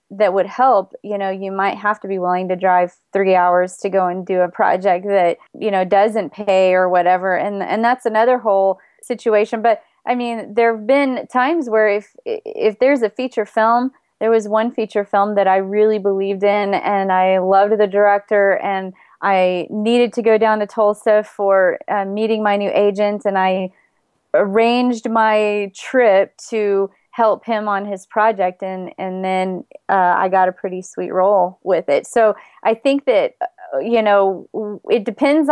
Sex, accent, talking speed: female, American, 180 wpm